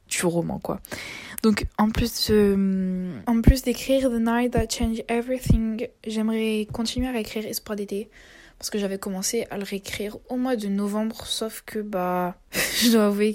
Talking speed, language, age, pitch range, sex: 170 wpm, French, 20-39, 185-215 Hz, female